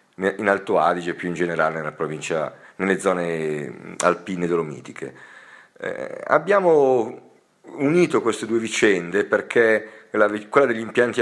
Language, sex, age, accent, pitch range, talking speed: Italian, male, 50-69, native, 90-115 Hz, 110 wpm